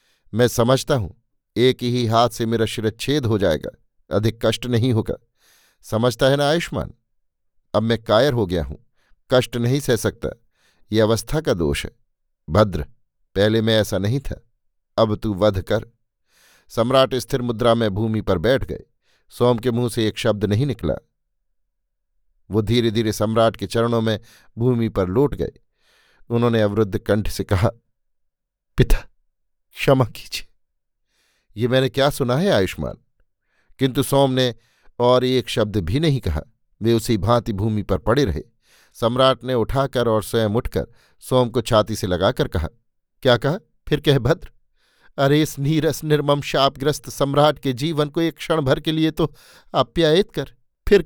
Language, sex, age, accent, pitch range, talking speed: Hindi, male, 50-69, native, 110-135 Hz, 155 wpm